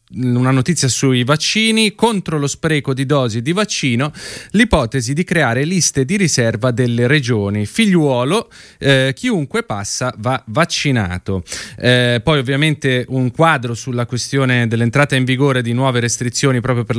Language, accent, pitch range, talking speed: Italian, native, 115-160 Hz, 140 wpm